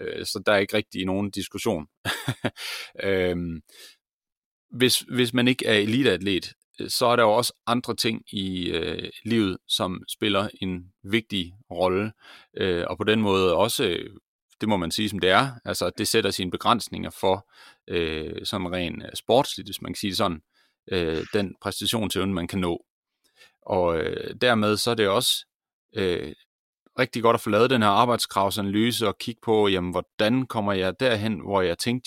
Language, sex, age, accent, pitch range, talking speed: Danish, male, 30-49, native, 90-110 Hz, 170 wpm